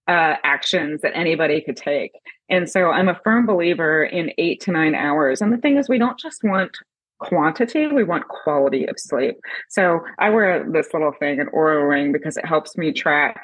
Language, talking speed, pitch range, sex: English, 200 wpm, 150-205 Hz, female